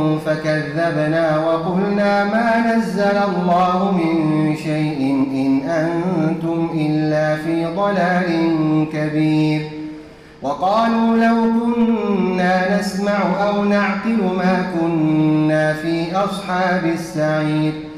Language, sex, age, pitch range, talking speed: Arabic, male, 30-49, 155-205 Hz, 75 wpm